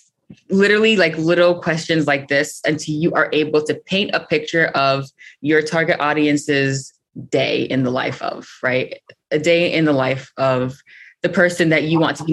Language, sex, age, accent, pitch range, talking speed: English, female, 20-39, American, 145-170 Hz, 180 wpm